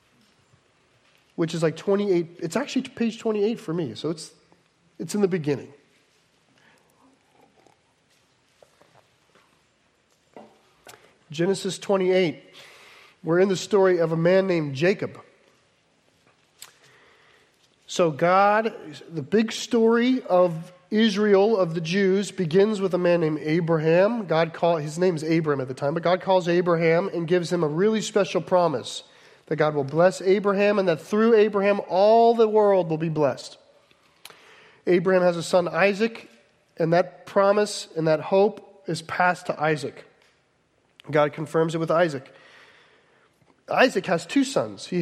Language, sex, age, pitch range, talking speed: English, male, 40-59, 165-200 Hz, 135 wpm